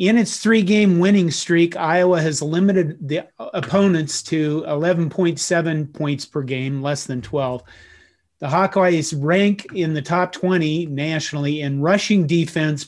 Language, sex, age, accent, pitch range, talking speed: English, male, 40-59, American, 145-185 Hz, 135 wpm